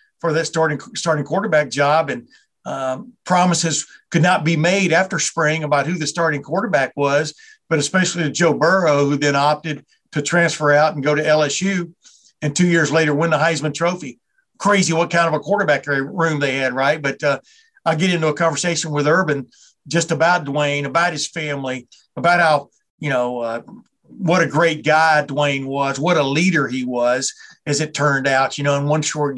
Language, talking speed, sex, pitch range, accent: English, 190 wpm, male, 145-170 Hz, American